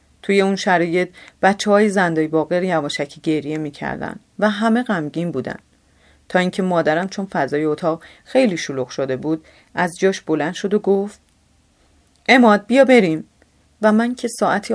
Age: 30-49